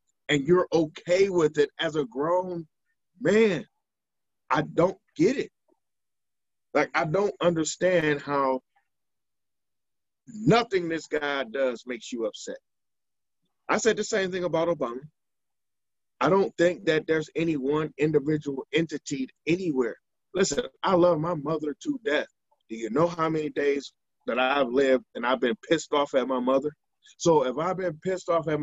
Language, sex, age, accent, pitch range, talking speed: English, male, 20-39, American, 145-205 Hz, 155 wpm